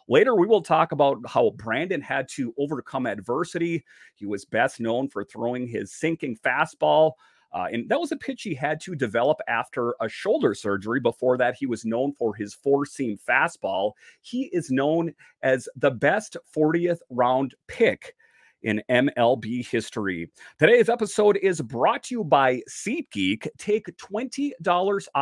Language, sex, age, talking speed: English, male, 30-49, 155 wpm